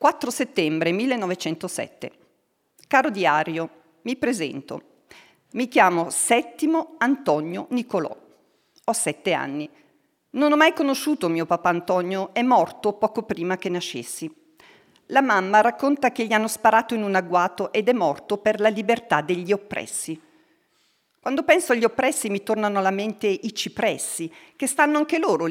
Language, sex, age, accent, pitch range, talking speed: Italian, female, 50-69, native, 190-260 Hz, 140 wpm